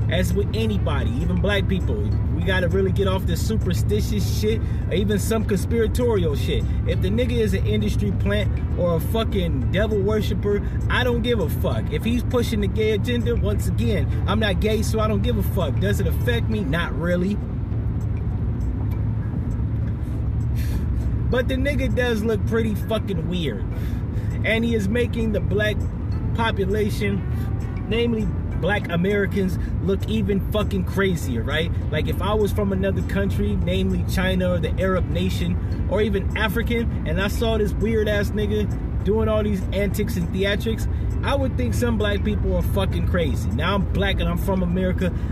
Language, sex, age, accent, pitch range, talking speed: English, male, 30-49, American, 95-110 Hz, 165 wpm